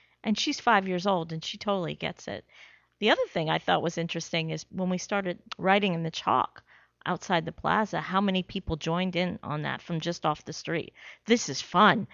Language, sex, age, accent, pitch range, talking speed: English, female, 40-59, American, 165-220 Hz, 215 wpm